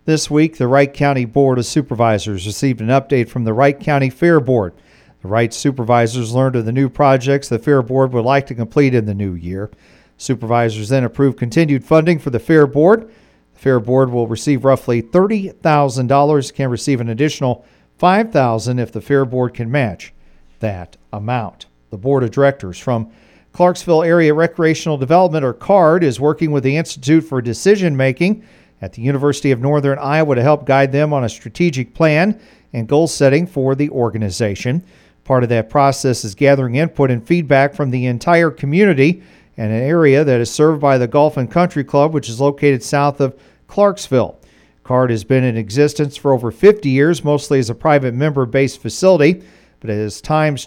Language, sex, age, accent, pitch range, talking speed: English, male, 40-59, American, 120-155 Hz, 180 wpm